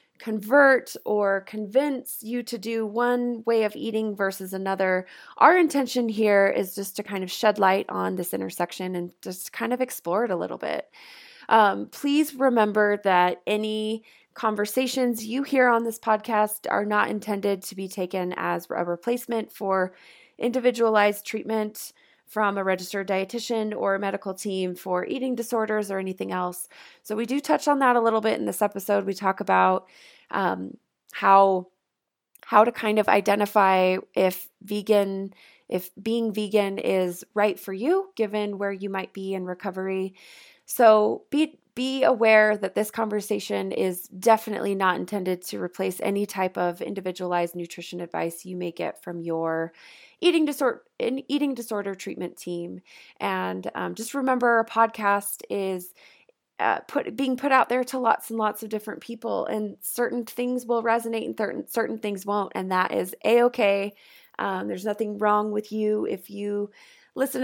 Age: 20-39